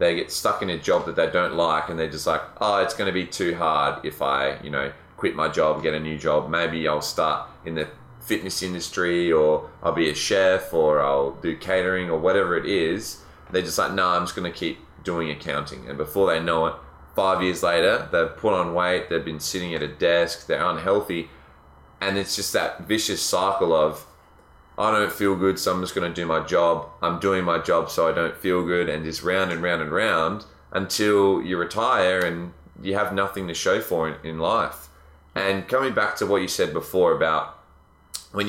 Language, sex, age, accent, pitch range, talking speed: English, male, 20-39, Australian, 75-95 Hz, 215 wpm